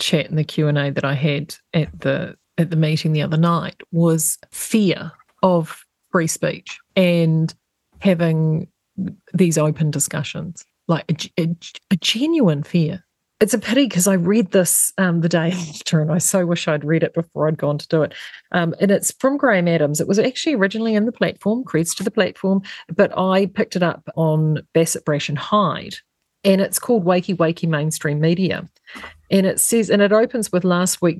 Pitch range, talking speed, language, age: 160-195 Hz, 190 wpm, English, 40-59